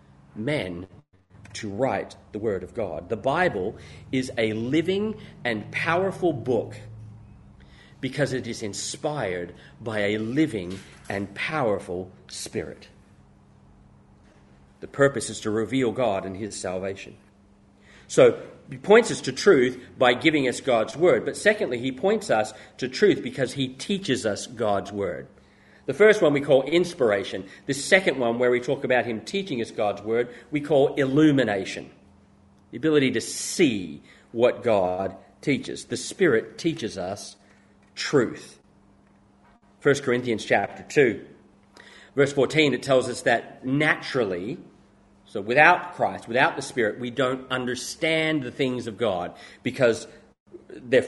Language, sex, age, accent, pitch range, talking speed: English, male, 40-59, Australian, 100-145 Hz, 135 wpm